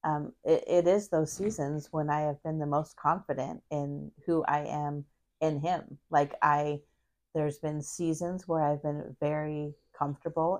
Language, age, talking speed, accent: English, 30-49, 165 wpm, American